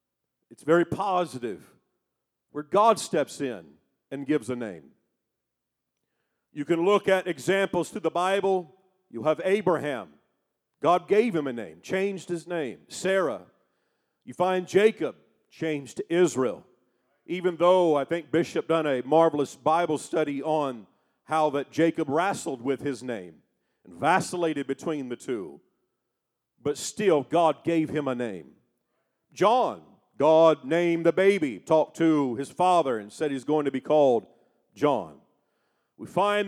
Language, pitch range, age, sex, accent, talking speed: English, 145-190 Hz, 50-69, male, American, 140 wpm